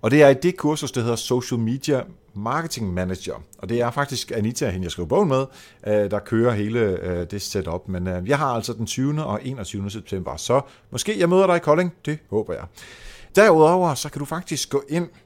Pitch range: 100-145 Hz